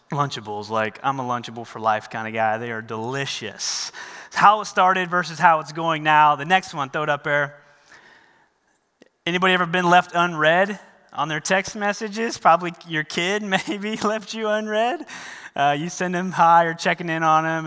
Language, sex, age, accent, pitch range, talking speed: English, male, 30-49, American, 130-185 Hz, 185 wpm